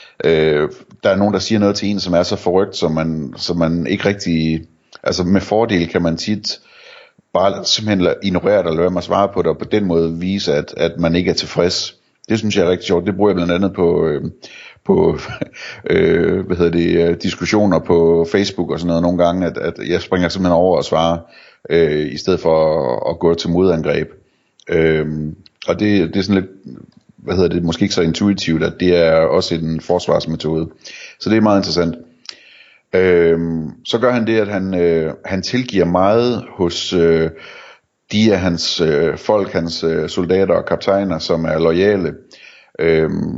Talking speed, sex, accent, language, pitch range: 190 wpm, male, native, Danish, 85-100 Hz